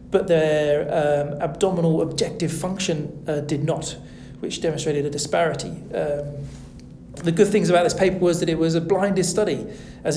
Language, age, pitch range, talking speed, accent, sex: English, 40-59, 145-170 Hz, 165 wpm, British, male